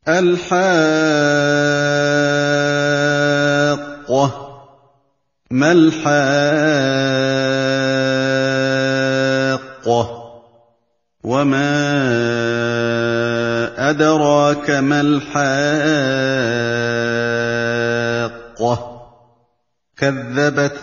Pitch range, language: 140-165 Hz, Indonesian